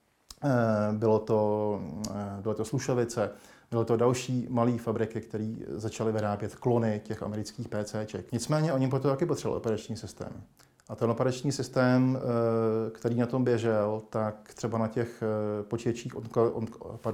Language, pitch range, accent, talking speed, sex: Czech, 105-120 Hz, native, 135 wpm, male